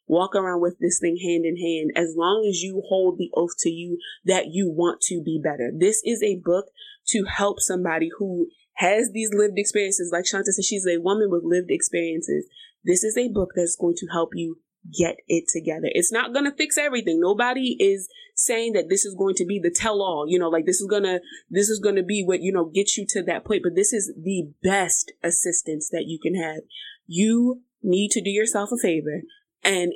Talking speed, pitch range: 225 wpm, 175-210 Hz